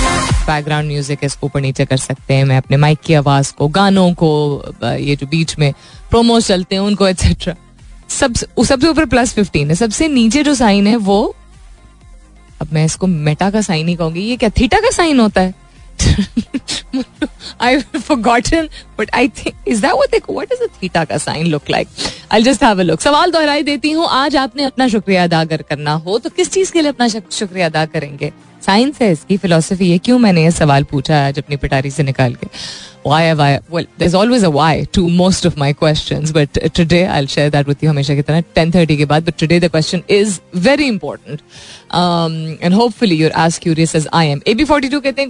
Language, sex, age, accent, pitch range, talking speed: Hindi, female, 20-39, native, 150-230 Hz, 100 wpm